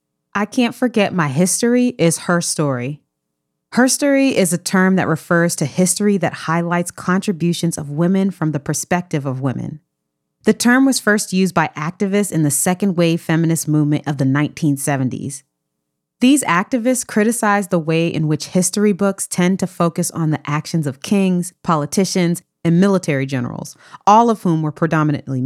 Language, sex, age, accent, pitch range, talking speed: English, female, 30-49, American, 155-200 Hz, 160 wpm